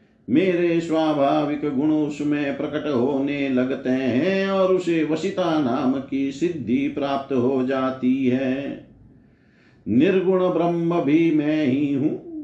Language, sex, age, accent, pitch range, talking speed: Hindi, male, 50-69, native, 145-185 Hz, 115 wpm